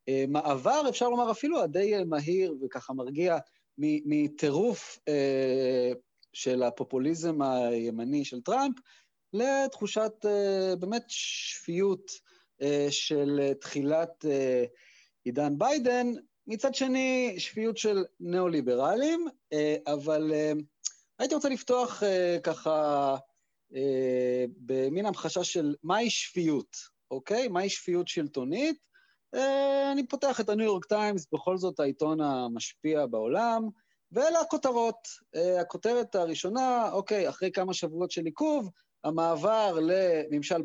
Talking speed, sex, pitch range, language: 95 wpm, male, 145-225 Hz, Hebrew